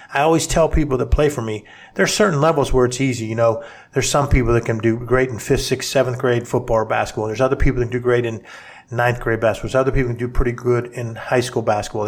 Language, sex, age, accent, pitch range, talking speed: English, male, 50-69, American, 115-135 Hz, 265 wpm